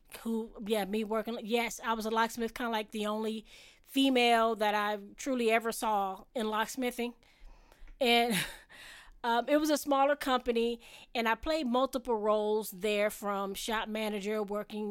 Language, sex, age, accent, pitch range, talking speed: English, female, 20-39, American, 220-270 Hz, 155 wpm